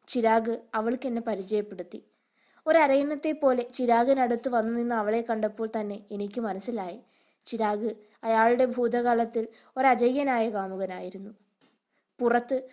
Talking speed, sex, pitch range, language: 90 wpm, female, 215-245 Hz, Malayalam